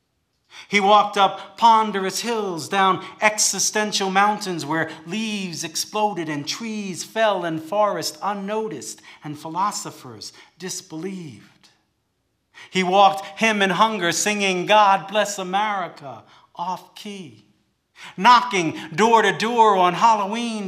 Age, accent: 50-69, American